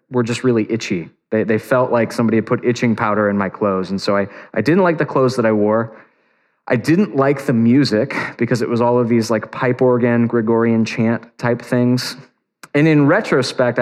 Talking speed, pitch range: 210 wpm, 110-135 Hz